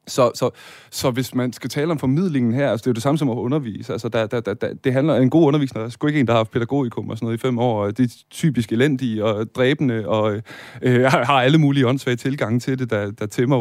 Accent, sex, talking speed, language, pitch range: native, male, 275 wpm, Danish, 115-140 Hz